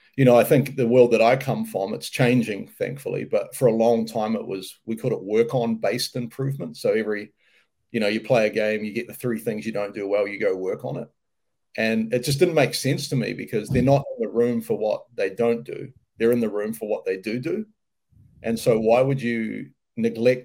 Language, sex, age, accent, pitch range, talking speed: English, male, 40-59, Australian, 110-135 Hz, 245 wpm